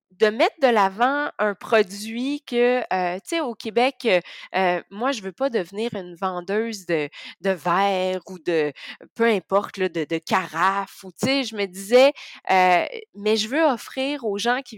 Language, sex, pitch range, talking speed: French, female, 190-245 Hz, 175 wpm